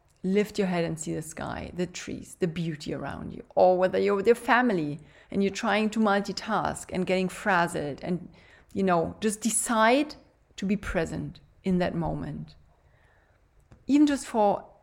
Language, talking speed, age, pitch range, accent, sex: English, 165 wpm, 30-49, 175-215 Hz, German, female